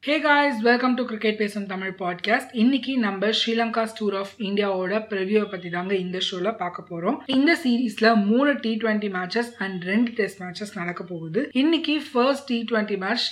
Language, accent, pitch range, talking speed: Tamil, native, 190-240 Hz, 135 wpm